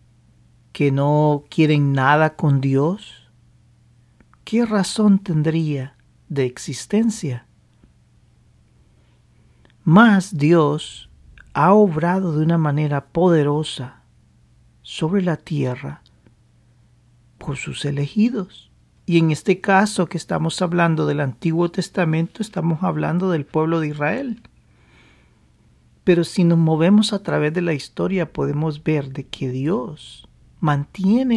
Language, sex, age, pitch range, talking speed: Spanish, male, 50-69, 135-180 Hz, 105 wpm